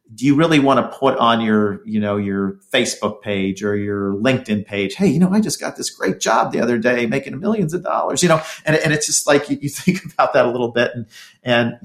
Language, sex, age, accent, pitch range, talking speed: English, male, 50-69, American, 105-125 Hz, 255 wpm